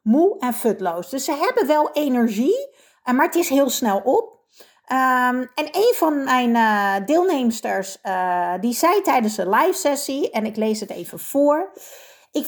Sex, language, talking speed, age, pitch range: female, Dutch, 165 wpm, 40-59, 225-300 Hz